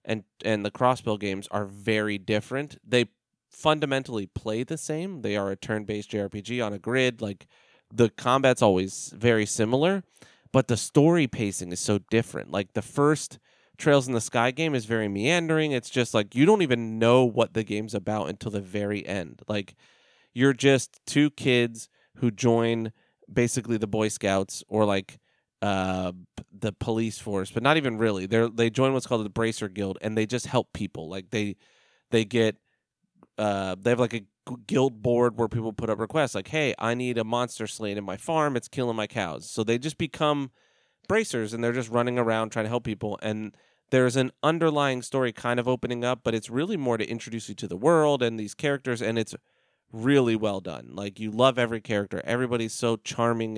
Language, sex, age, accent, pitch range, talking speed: English, male, 30-49, American, 105-130 Hz, 195 wpm